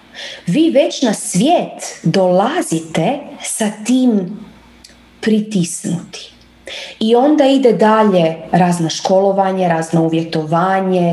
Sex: female